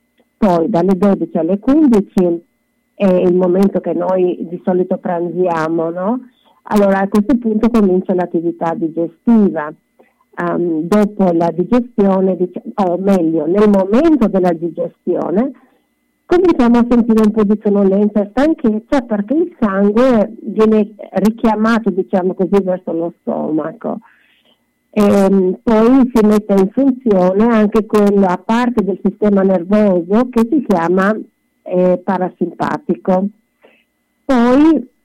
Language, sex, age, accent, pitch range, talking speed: Italian, female, 50-69, native, 180-230 Hz, 120 wpm